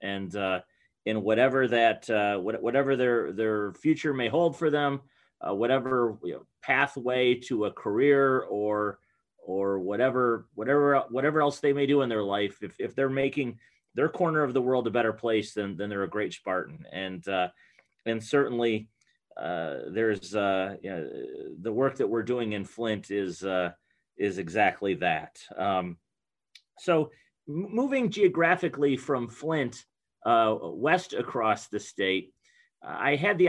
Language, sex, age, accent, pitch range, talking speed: English, male, 30-49, American, 110-145 Hz, 160 wpm